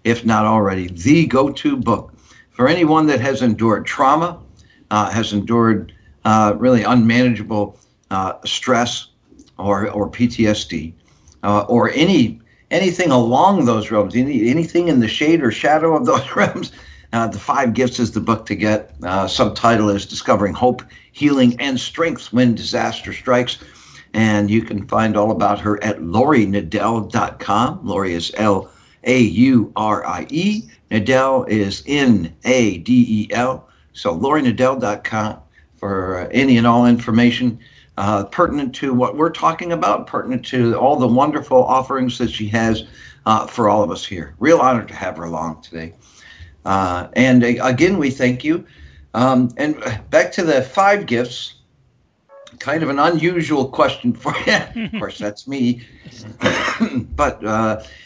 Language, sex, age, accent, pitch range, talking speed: English, male, 60-79, American, 105-130 Hz, 145 wpm